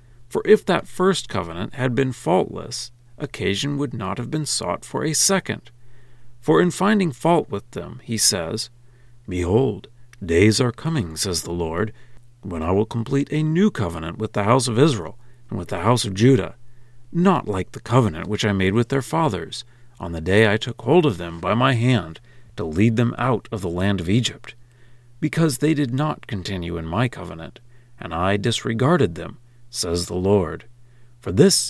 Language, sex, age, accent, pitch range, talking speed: English, male, 50-69, American, 100-130 Hz, 185 wpm